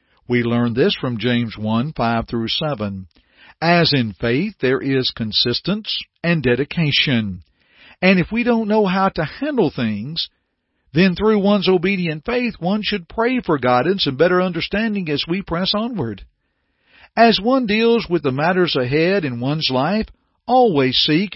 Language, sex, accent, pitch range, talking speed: English, male, American, 125-190 Hz, 150 wpm